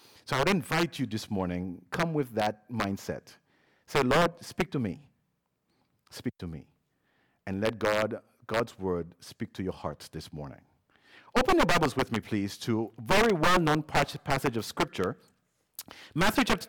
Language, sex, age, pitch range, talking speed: English, male, 50-69, 105-170 Hz, 165 wpm